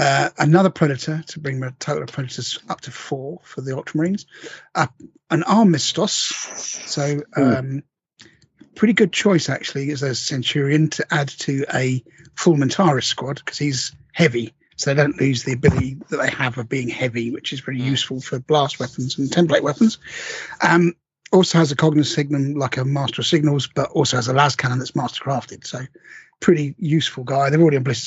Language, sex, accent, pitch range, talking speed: English, male, British, 130-160 Hz, 185 wpm